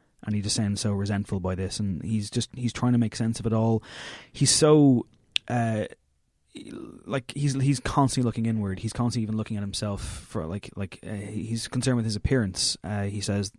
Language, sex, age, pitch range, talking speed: English, male, 20-39, 100-120 Hz, 200 wpm